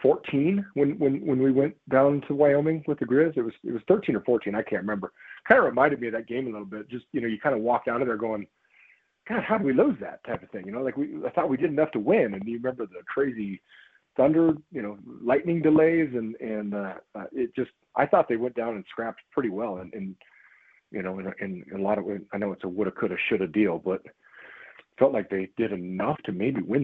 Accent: American